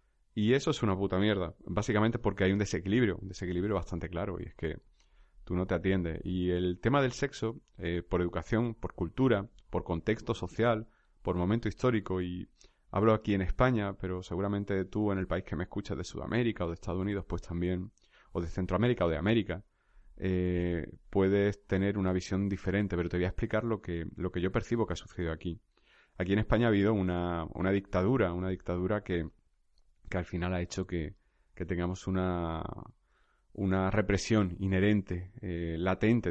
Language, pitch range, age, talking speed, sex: Spanish, 90-105 Hz, 30-49, 185 wpm, male